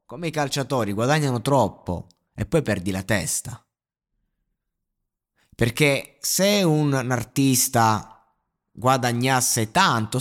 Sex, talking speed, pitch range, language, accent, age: male, 95 wpm, 100-130 Hz, Italian, native, 30-49